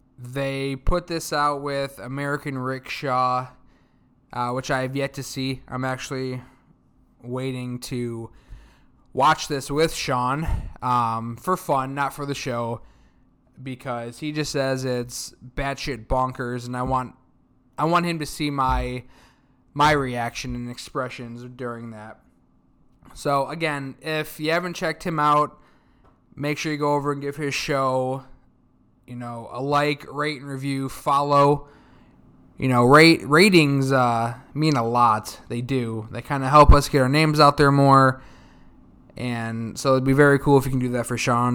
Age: 20-39